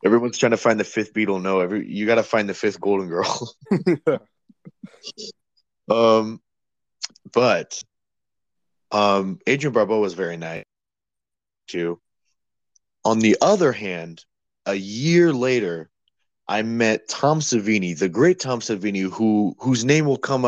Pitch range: 95-115 Hz